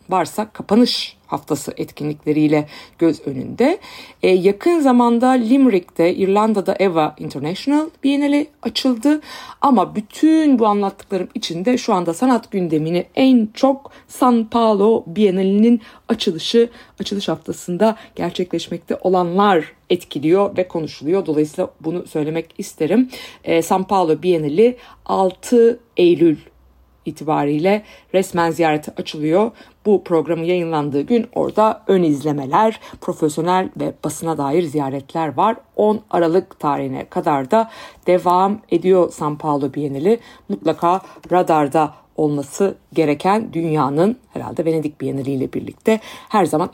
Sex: female